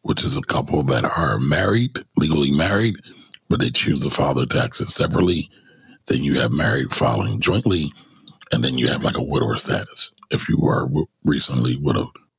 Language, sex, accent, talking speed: English, male, American, 180 wpm